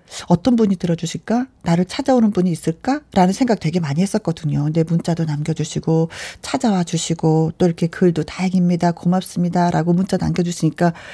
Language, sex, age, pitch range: Korean, female, 40-59, 170-245 Hz